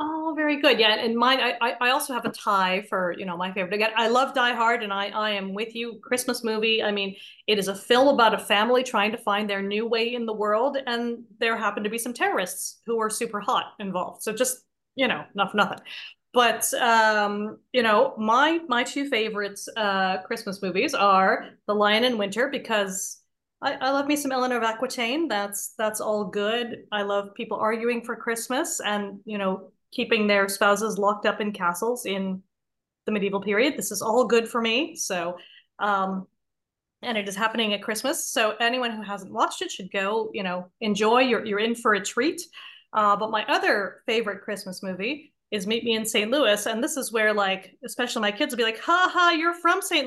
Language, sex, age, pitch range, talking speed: English, female, 30-49, 205-250 Hz, 210 wpm